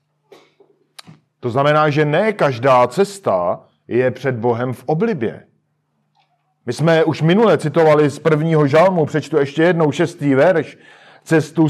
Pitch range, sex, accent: 135-165 Hz, male, native